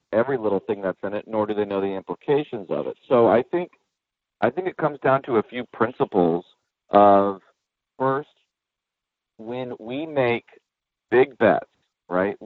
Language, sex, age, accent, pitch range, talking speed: English, male, 40-59, American, 100-135 Hz, 165 wpm